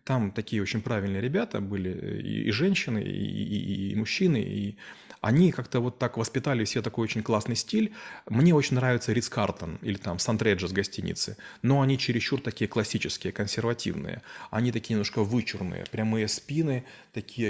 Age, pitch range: 30-49, 110-140 Hz